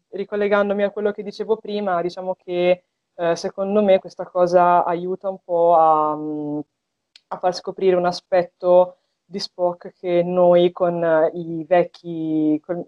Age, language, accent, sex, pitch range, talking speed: 20-39, Italian, native, female, 160-185 Hz, 140 wpm